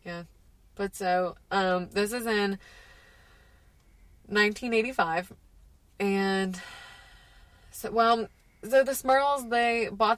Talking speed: 95 wpm